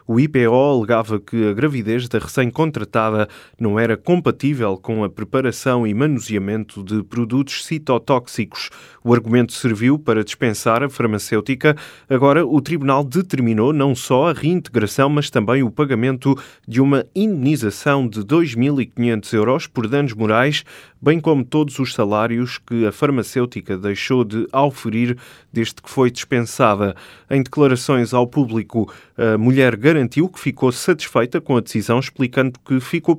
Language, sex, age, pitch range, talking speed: Portuguese, male, 20-39, 110-135 Hz, 140 wpm